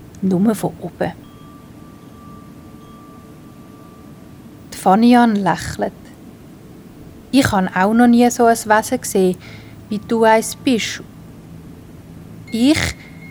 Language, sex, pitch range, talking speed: German, female, 180-220 Hz, 90 wpm